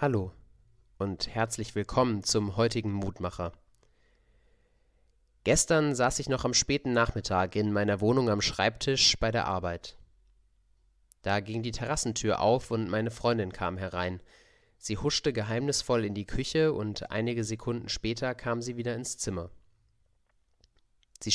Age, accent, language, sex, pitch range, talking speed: 30-49, German, German, male, 95-125 Hz, 135 wpm